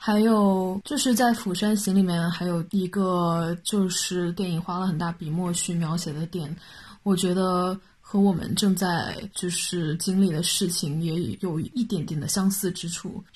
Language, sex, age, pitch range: Chinese, female, 20-39, 170-195 Hz